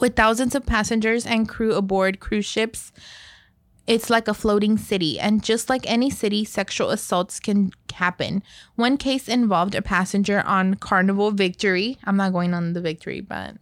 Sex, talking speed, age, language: female, 165 wpm, 20-39, English